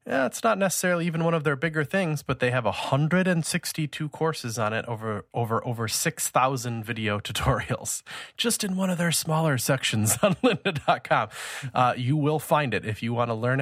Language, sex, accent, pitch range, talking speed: English, male, American, 105-135 Hz, 185 wpm